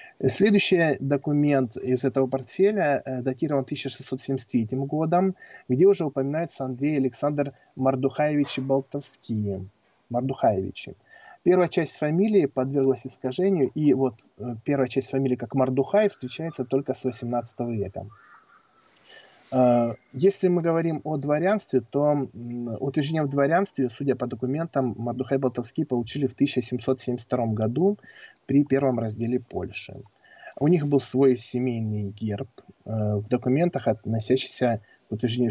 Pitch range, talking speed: 120-140 Hz, 115 wpm